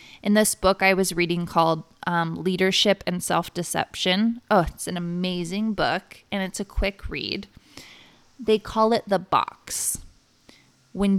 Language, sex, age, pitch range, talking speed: English, female, 20-39, 180-220 Hz, 145 wpm